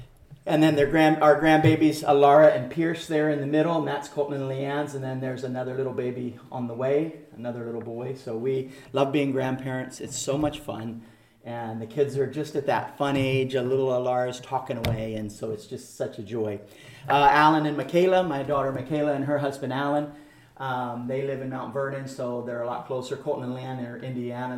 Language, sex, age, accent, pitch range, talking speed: English, male, 40-59, American, 120-150 Hz, 215 wpm